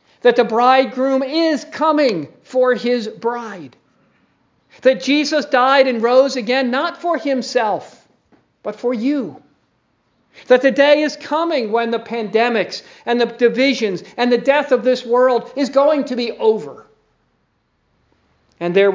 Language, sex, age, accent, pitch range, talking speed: English, male, 50-69, American, 200-270 Hz, 140 wpm